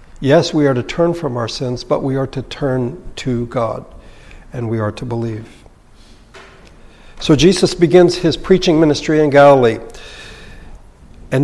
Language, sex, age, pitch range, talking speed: English, male, 60-79, 120-155 Hz, 150 wpm